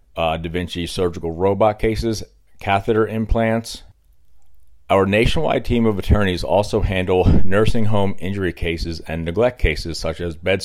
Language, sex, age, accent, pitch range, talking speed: English, male, 40-59, American, 85-105 Hz, 140 wpm